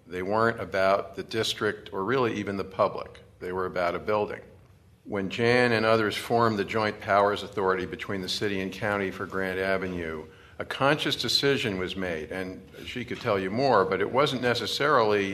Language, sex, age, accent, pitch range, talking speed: English, male, 50-69, American, 95-115 Hz, 185 wpm